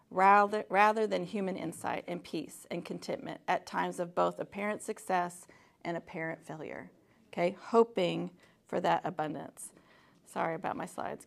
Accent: American